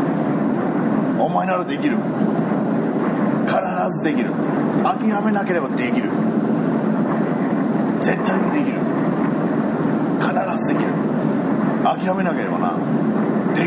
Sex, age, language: male, 40-59, Japanese